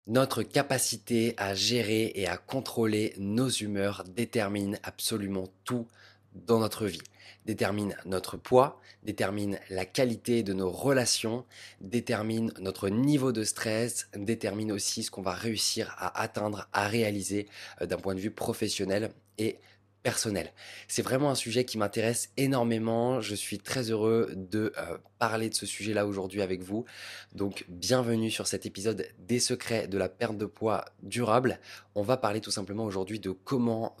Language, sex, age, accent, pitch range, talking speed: French, male, 20-39, French, 100-120 Hz, 150 wpm